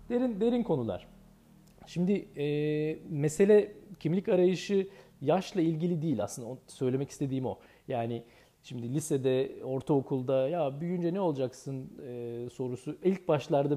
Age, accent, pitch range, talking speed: 40-59, native, 130-180 Hz, 120 wpm